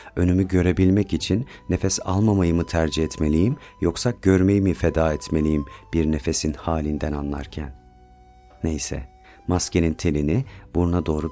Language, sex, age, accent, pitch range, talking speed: Turkish, male, 40-59, native, 80-95 Hz, 115 wpm